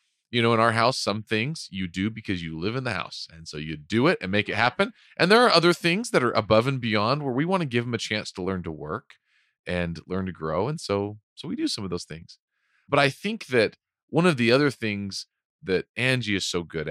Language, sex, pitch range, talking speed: English, male, 90-115 Hz, 260 wpm